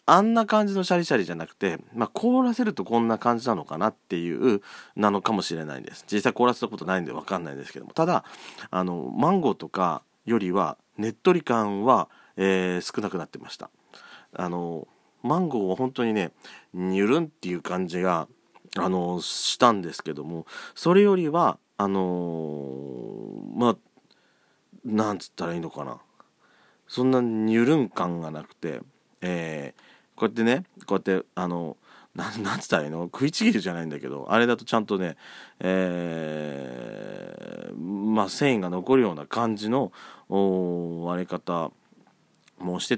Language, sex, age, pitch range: Japanese, male, 40-59, 90-125 Hz